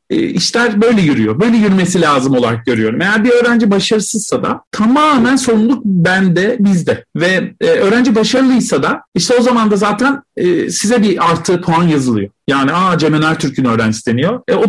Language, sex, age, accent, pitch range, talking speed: Turkish, male, 40-59, native, 160-235 Hz, 170 wpm